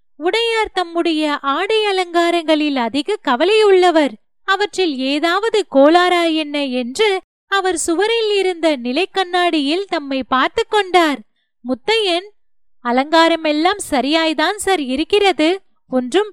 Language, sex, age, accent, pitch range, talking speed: Tamil, female, 20-39, native, 285-385 Hz, 90 wpm